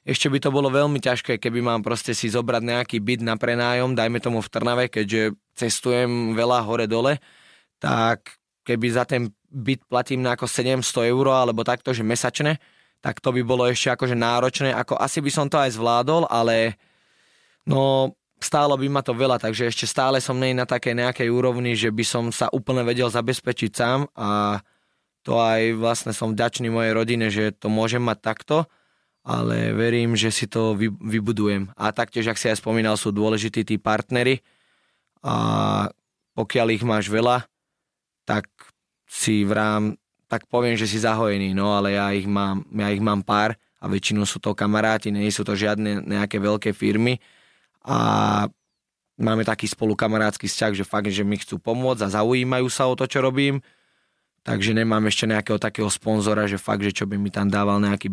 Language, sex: Slovak, male